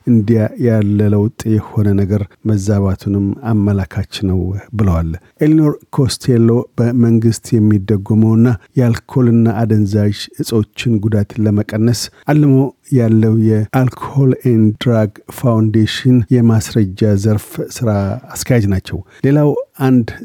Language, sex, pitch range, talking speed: Amharic, male, 105-125 Hz, 90 wpm